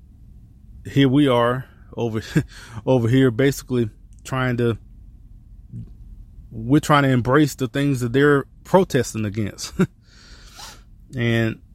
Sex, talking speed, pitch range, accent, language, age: male, 100 wpm, 110-145 Hz, American, English, 20-39